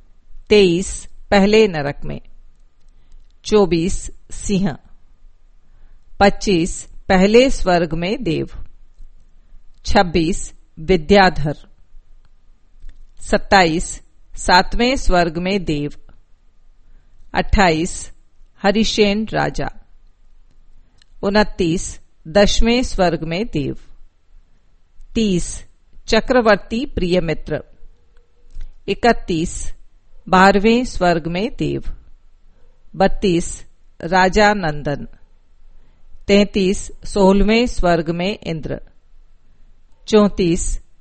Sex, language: female, English